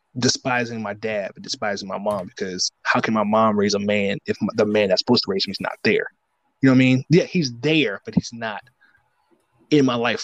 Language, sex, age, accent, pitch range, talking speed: English, male, 20-39, American, 110-155 Hz, 235 wpm